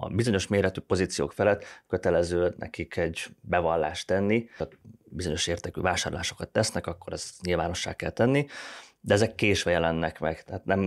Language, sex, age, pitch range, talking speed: Hungarian, male, 30-49, 85-110 Hz, 150 wpm